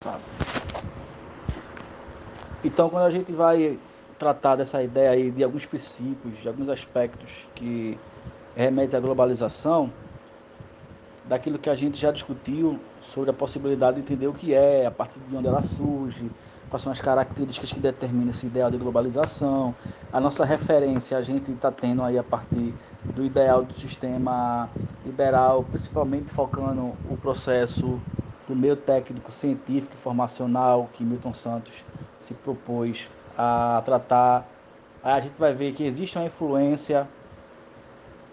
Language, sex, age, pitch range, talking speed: Portuguese, male, 20-39, 120-140 Hz, 140 wpm